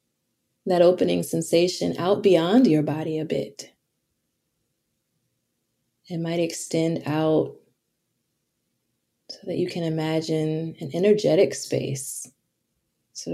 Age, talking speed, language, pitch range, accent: 20-39, 100 wpm, English, 150-175 Hz, American